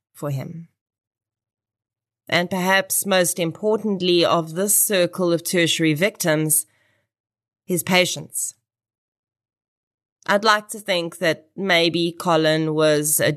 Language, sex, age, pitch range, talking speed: English, female, 30-49, 115-175 Hz, 105 wpm